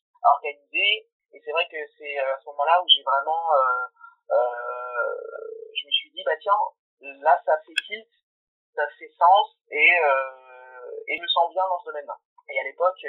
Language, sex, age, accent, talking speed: French, male, 30-49, French, 190 wpm